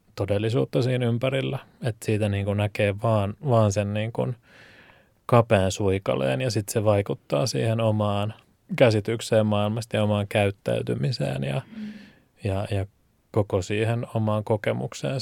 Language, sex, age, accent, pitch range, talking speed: Finnish, male, 20-39, native, 100-115 Hz, 115 wpm